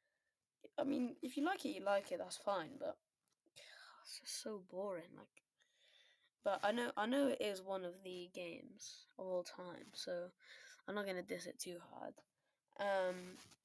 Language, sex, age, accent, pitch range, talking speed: English, female, 10-29, British, 180-245 Hz, 175 wpm